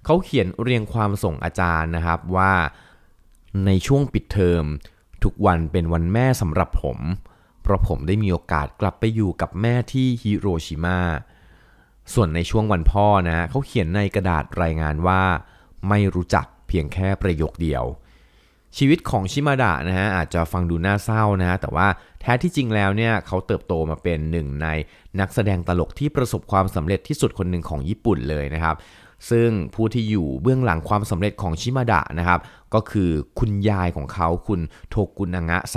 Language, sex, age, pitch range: Thai, male, 20-39, 85-105 Hz